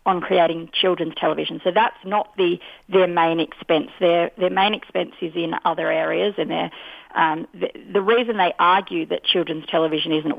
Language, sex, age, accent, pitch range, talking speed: English, female, 40-59, Australian, 165-215 Hz, 180 wpm